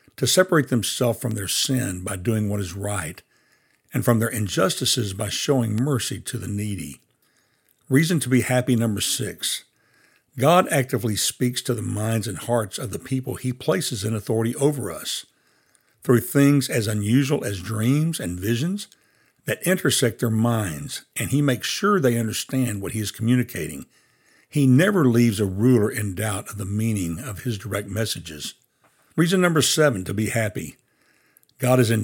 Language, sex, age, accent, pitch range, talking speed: English, male, 60-79, American, 110-135 Hz, 165 wpm